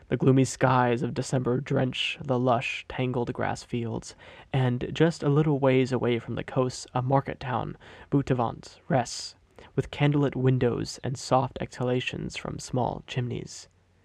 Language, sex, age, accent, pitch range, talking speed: English, male, 20-39, American, 115-135 Hz, 145 wpm